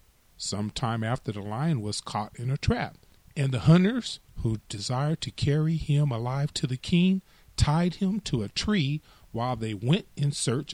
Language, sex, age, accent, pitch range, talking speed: English, male, 40-59, American, 110-155 Hz, 180 wpm